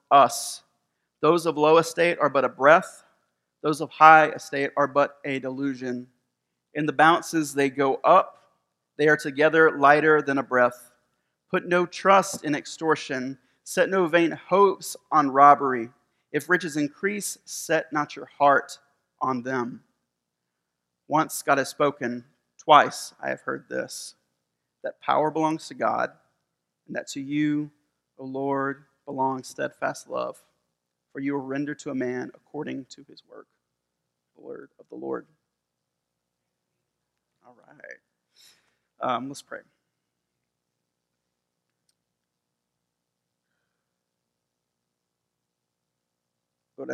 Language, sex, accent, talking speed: English, male, American, 120 wpm